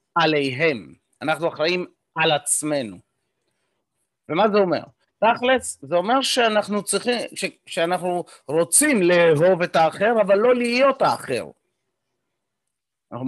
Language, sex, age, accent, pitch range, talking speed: Hebrew, male, 30-49, native, 165-220 Hz, 110 wpm